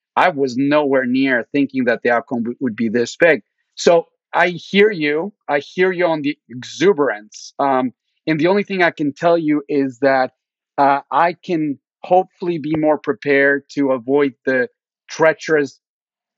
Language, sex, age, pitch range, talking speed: English, male, 40-59, 135-165 Hz, 160 wpm